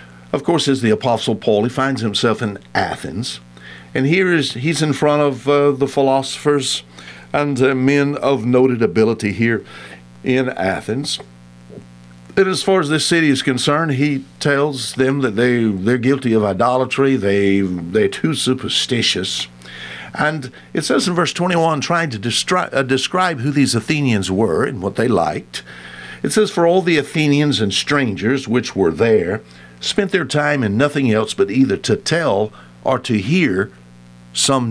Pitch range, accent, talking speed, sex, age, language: 95-145 Hz, American, 165 wpm, male, 60-79, English